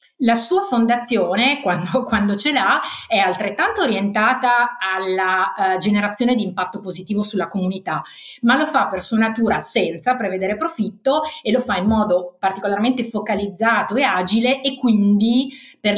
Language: Italian